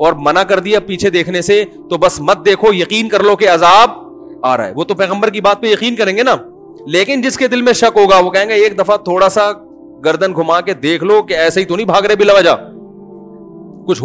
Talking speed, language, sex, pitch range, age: 245 wpm, Urdu, male, 155-210 Hz, 40-59